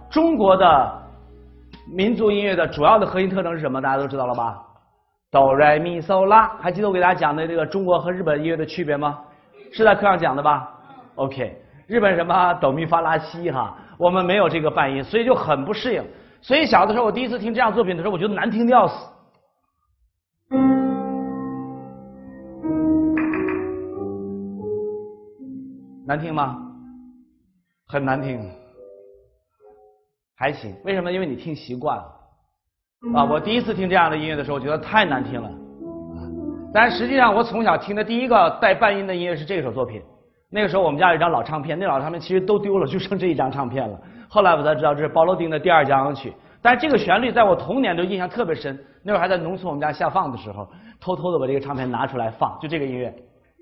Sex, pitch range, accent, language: male, 130-205 Hz, native, Chinese